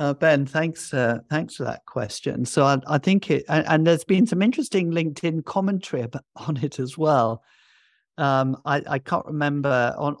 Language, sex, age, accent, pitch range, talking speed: English, male, 50-69, British, 120-145 Hz, 190 wpm